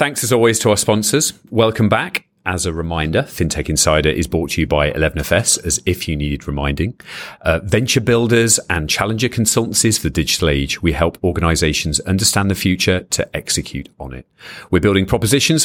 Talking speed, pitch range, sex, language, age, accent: 180 wpm, 80-110 Hz, male, English, 40-59, British